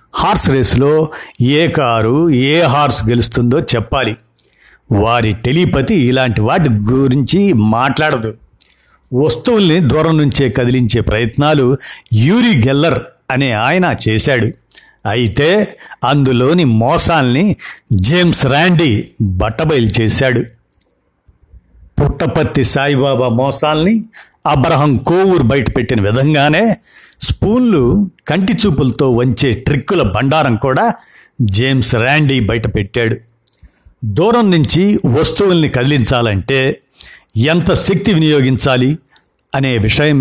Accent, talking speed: native, 85 wpm